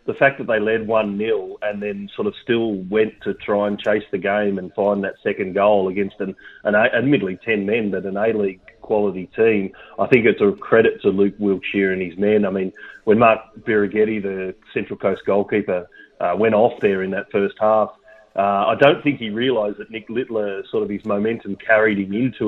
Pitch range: 100-115 Hz